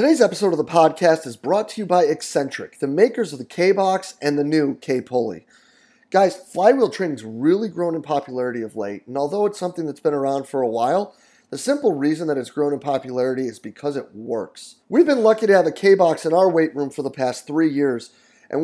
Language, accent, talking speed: English, American, 220 wpm